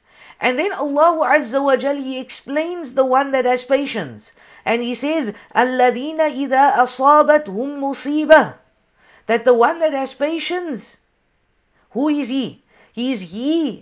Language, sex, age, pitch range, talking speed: English, female, 50-69, 210-255 Hz, 140 wpm